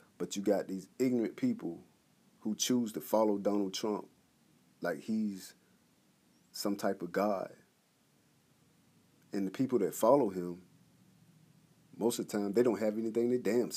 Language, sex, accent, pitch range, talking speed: English, male, American, 95-110 Hz, 150 wpm